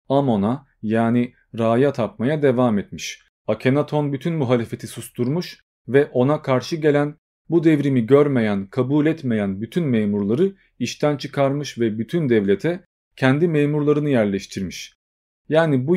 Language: Turkish